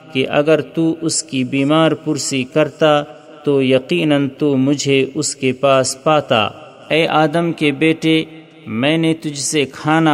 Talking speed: 150 wpm